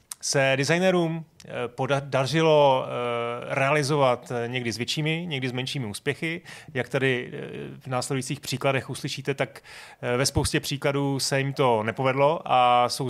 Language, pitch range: Czech, 120-150 Hz